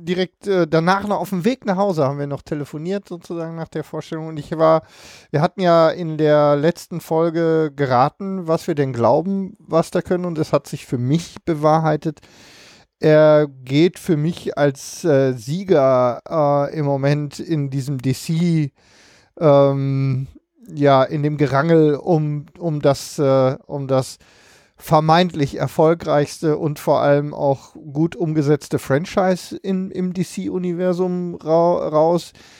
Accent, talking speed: German, 145 wpm